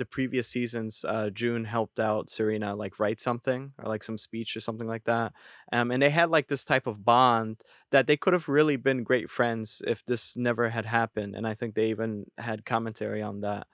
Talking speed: 220 wpm